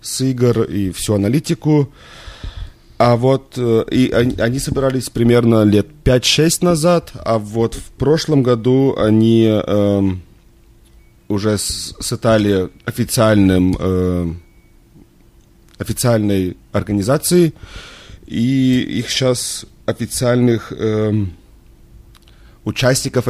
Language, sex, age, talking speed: Russian, male, 30-49, 85 wpm